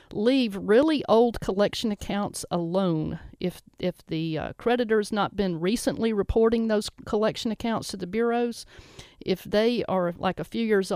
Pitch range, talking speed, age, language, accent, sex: 175-220 Hz, 155 wpm, 50-69, English, American, female